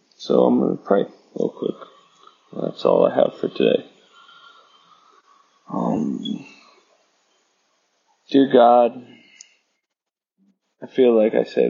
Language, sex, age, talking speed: English, male, 20-39, 110 wpm